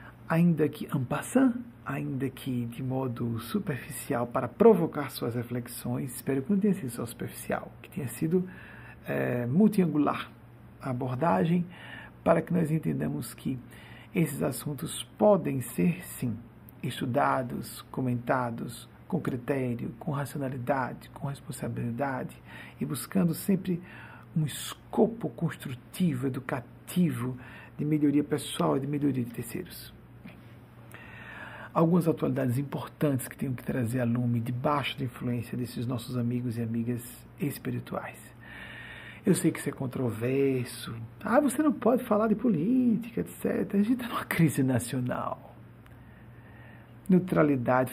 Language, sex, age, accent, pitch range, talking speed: Portuguese, male, 60-79, Brazilian, 120-170 Hz, 125 wpm